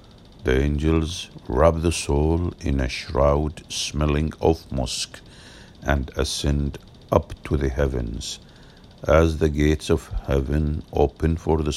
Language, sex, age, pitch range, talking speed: English, male, 50-69, 70-85 Hz, 125 wpm